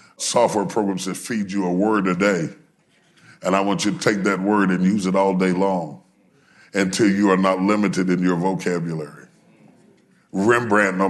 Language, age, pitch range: English, 40-59, 90-100 Hz